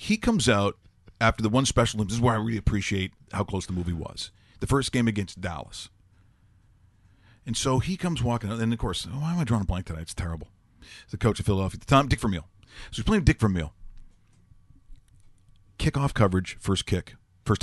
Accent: American